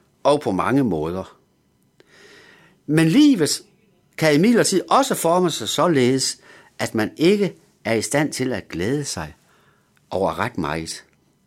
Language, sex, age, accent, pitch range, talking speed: Danish, male, 60-79, native, 120-190 Hz, 140 wpm